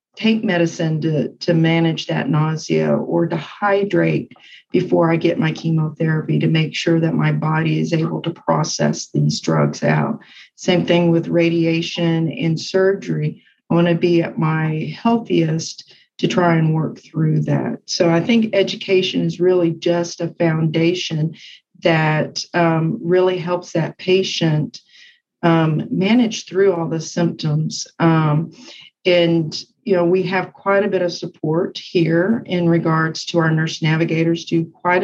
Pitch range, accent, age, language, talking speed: 160-180 Hz, American, 40-59, English, 150 wpm